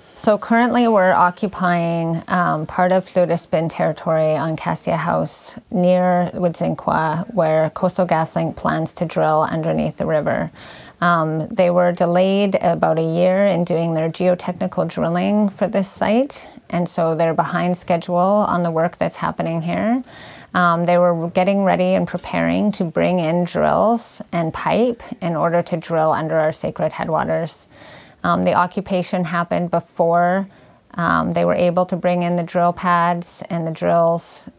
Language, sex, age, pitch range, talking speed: English, female, 30-49, 170-185 Hz, 155 wpm